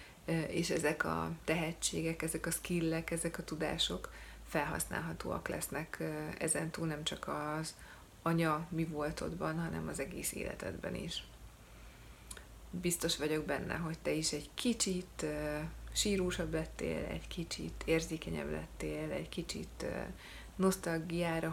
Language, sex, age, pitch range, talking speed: Hungarian, female, 30-49, 145-165 Hz, 115 wpm